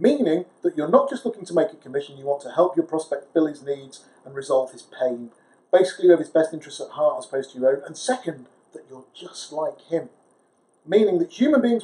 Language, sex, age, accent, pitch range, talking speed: English, male, 40-59, British, 155-260 Hz, 240 wpm